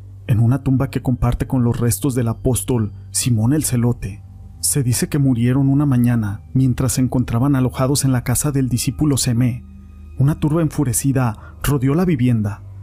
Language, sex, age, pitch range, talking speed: Spanish, male, 40-59, 110-135 Hz, 165 wpm